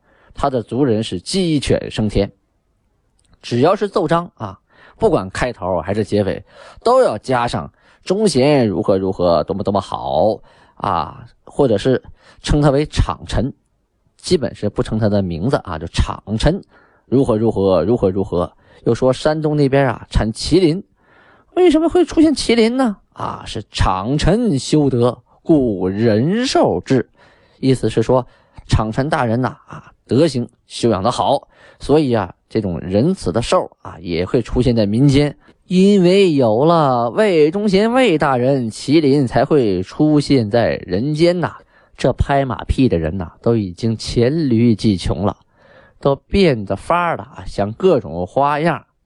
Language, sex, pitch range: Chinese, male, 100-150 Hz